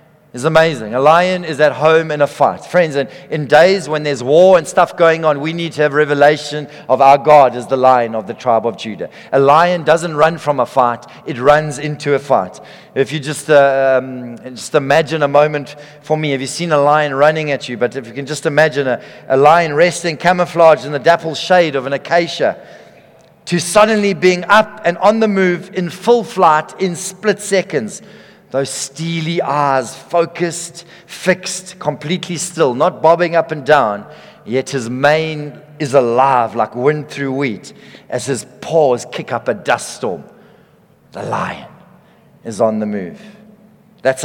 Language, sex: English, male